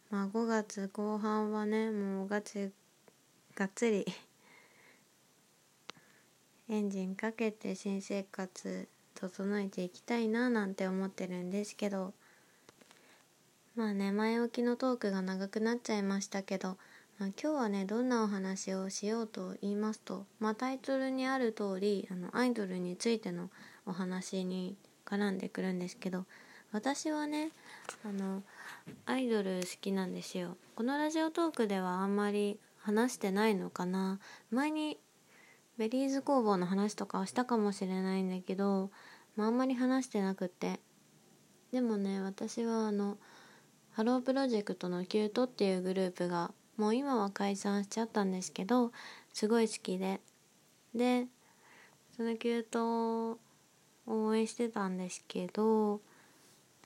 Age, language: 20-39, Japanese